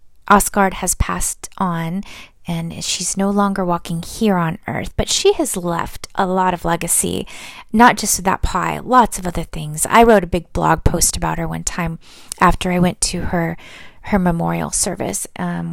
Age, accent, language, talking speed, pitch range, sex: 20-39, American, English, 180 wpm, 165-200 Hz, female